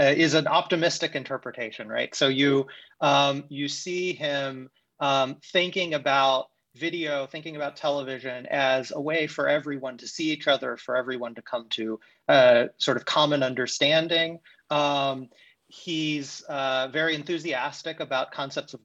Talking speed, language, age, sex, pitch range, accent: 145 wpm, English, 30-49, male, 130-165 Hz, American